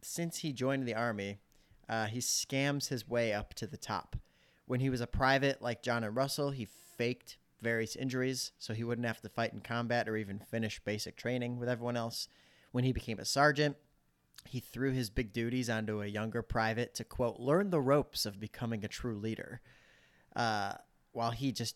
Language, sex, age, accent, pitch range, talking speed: English, male, 30-49, American, 105-130 Hz, 195 wpm